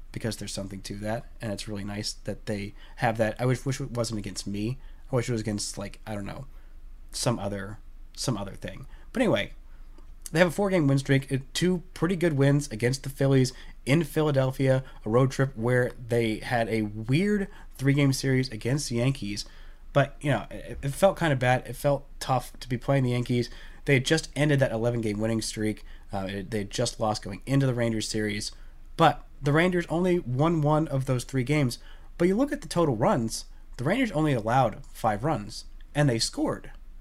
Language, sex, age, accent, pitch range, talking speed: English, male, 20-39, American, 110-145 Hz, 205 wpm